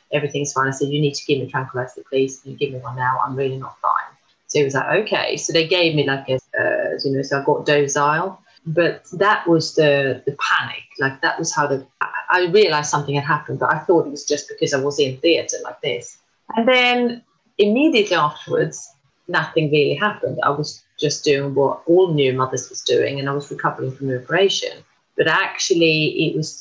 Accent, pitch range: British, 140-180 Hz